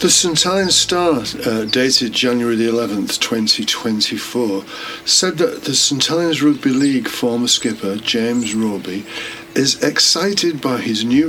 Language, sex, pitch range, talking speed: English, male, 110-180 Hz, 130 wpm